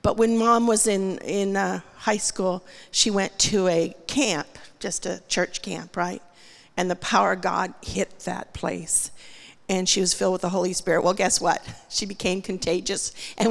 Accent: American